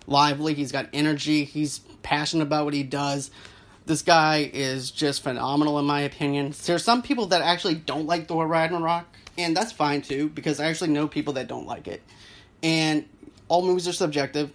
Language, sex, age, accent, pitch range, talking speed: English, male, 30-49, American, 140-165 Hz, 185 wpm